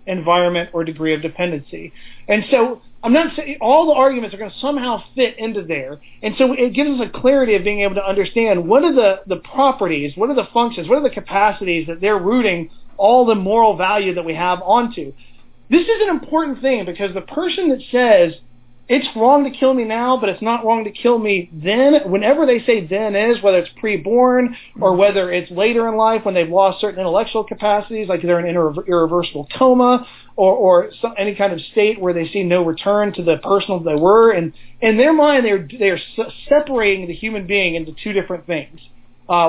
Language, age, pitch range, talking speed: English, 40-59, 175-235 Hz, 210 wpm